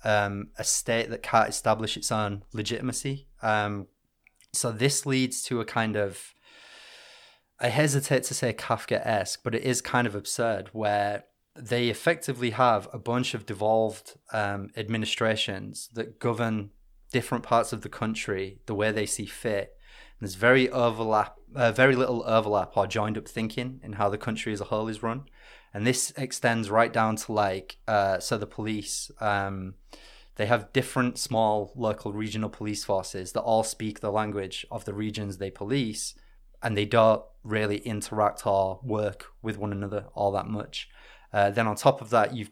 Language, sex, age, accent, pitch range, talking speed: English, male, 20-39, British, 105-120 Hz, 170 wpm